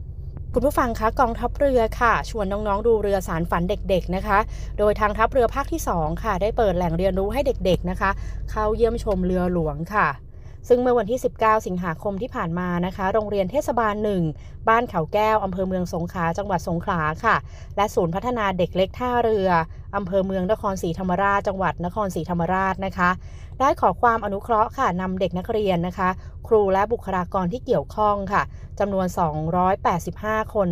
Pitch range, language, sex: 180-220 Hz, Thai, female